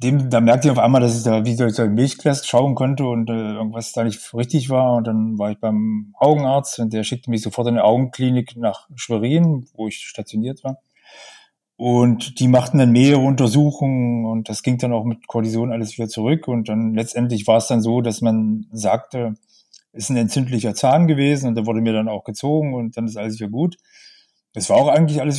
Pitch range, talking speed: 110-130 Hz, 215 wpm